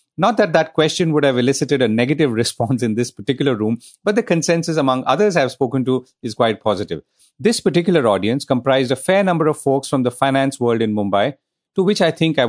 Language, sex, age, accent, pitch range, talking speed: English, male, 40-59, Indian, 120-160 Hz, 215 wpm